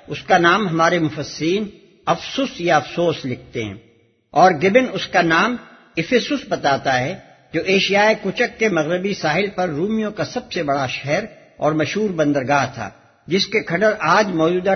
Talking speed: 165 wpm